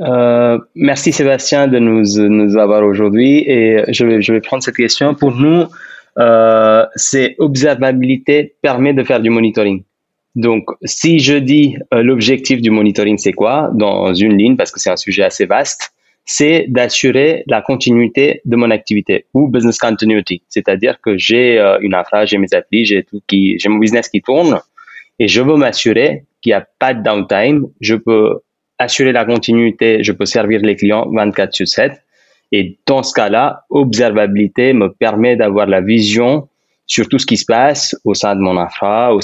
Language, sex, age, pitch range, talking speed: French, male, 20-39, 105-130 Hz, 180 wpm